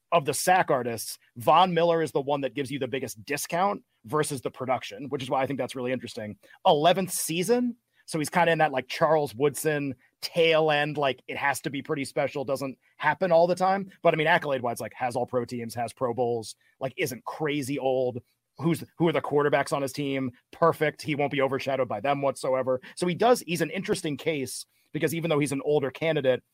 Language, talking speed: English, 220 wpm